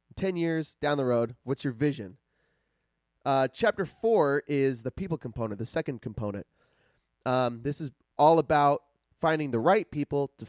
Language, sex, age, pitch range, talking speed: English, male, 30-49, 120-155 Hz, 160 wpm